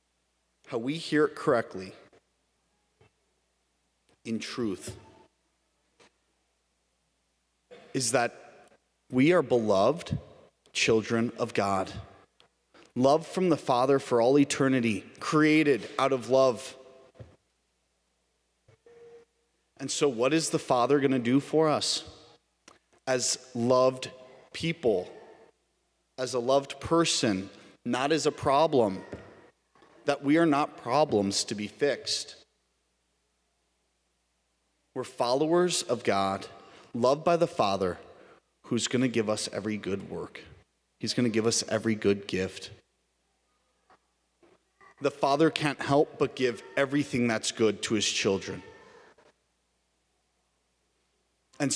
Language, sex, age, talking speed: English, male, 30-49, 110 wpm